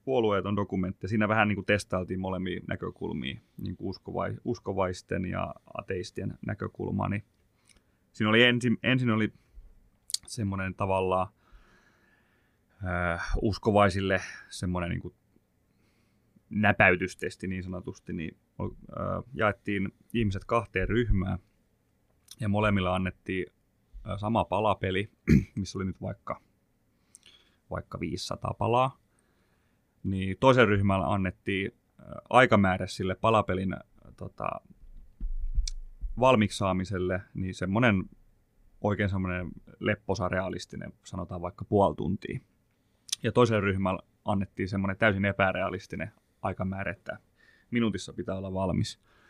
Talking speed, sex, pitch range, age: 100 wpm, male, 95-110 Hz, 30-49